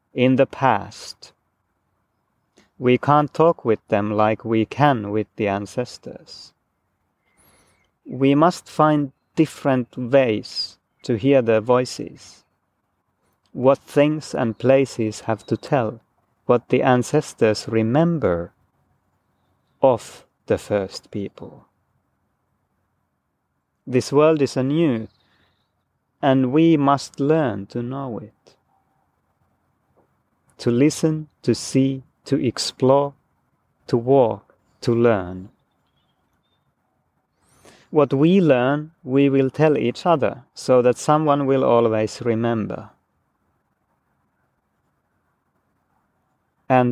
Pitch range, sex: 110-140 Hz, male